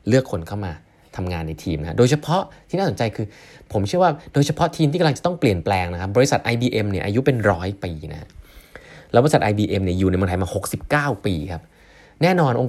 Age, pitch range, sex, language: 20-39, 95-140 Hz, male, Thai